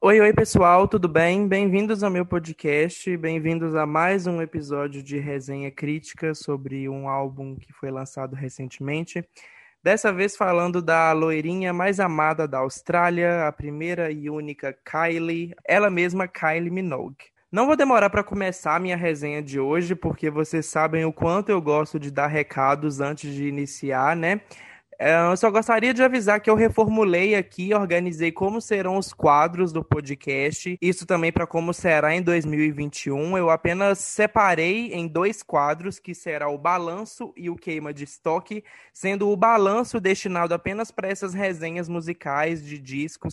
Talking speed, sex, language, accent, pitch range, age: 160 wpm, male, Portuguese, Brazilian, 150-195 Hz, 20-39